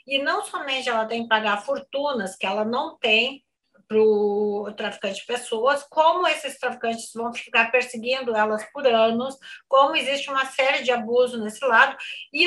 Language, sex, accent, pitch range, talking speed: Portuguese, female, Brazilian, 230-275 Hz, 170 wpm